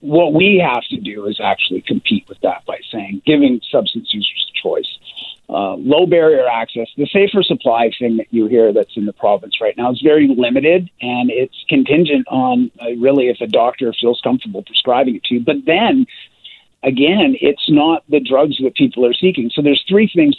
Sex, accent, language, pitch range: male, American, English, 120-185 Hz